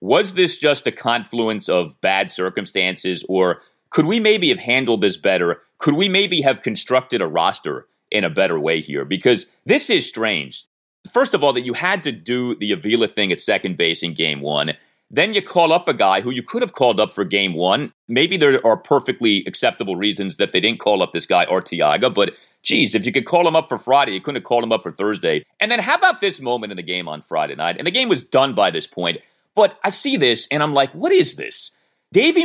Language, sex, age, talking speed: English, male, 30-49, 235 wpm